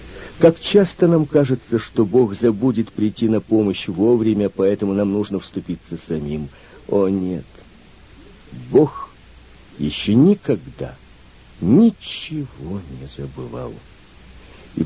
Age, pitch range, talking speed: 50-69, 75-120 Hz, 100 wpm